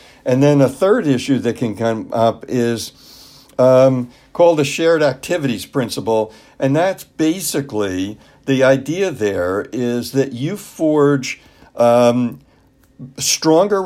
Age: 60-79